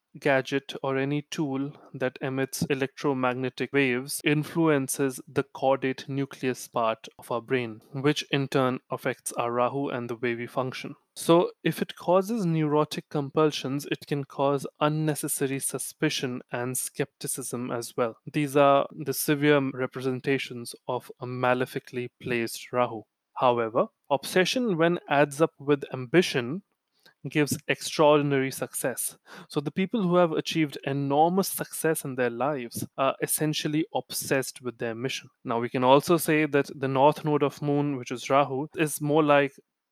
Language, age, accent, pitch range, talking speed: English, 20-39, Indian, 130-155 Hz, 145 wpm